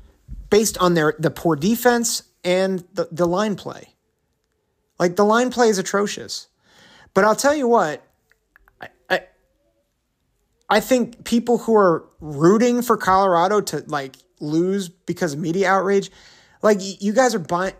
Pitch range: 150-185 Hz